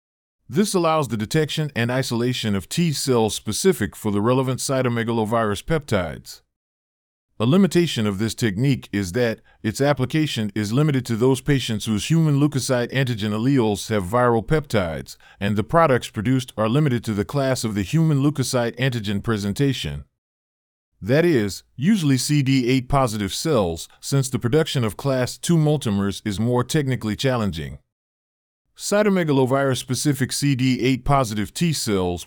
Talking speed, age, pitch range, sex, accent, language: 130 wpm, 40-59, 105-140 Hz, male, American, English